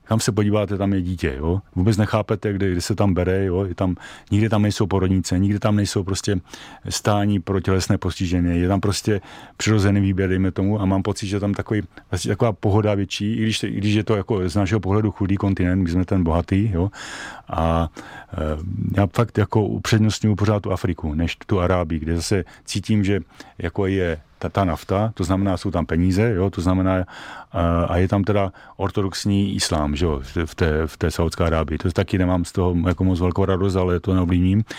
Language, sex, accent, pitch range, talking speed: Czech, male, native, 90-100 Hz, 200 wpm